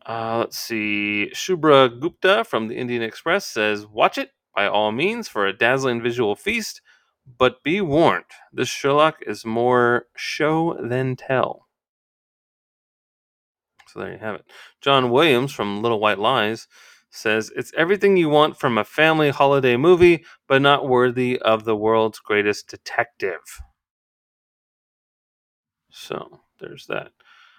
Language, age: English, 30-49